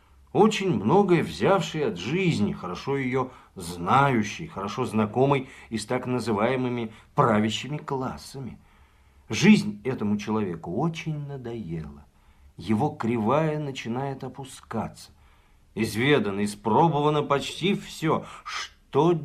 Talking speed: 95 wpm